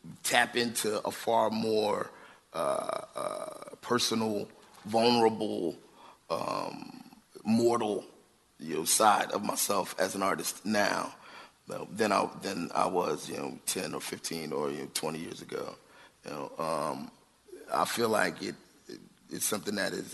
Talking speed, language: 150 wpm, English